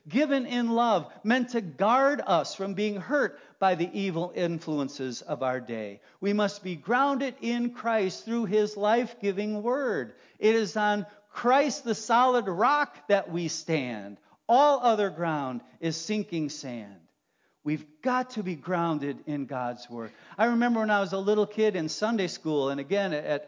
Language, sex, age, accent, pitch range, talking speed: English, male, 50-69, American, 140-210 Hz, 165 wpm